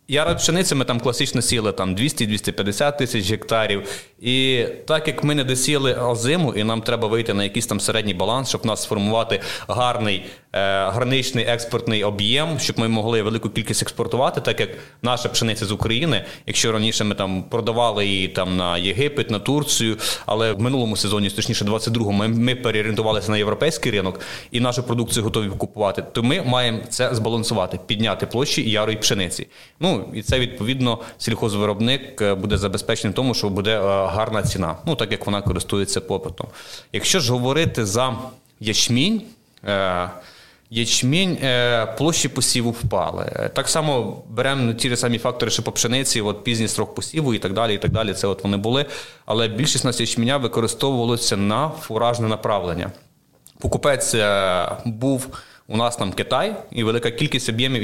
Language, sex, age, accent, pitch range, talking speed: Ukrainian, male, 30-49, native, 110-130 Hz, 160 wpm